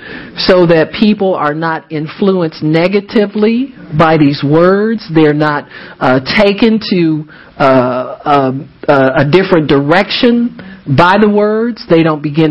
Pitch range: 155-200 Hz